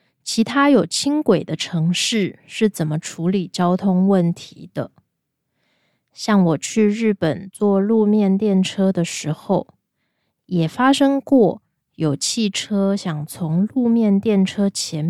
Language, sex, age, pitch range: Japanese, female, 20-39, 165-215 Hz